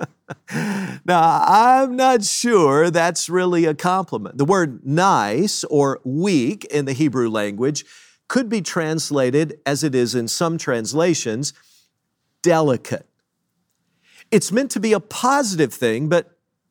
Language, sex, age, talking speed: English, male, 50-69, 125 wpm